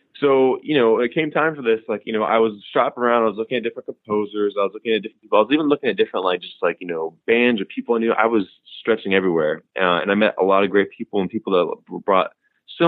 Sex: male